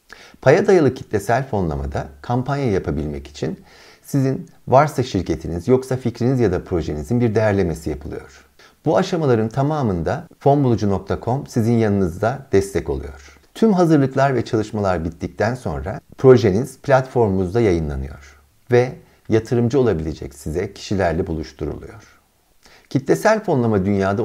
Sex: male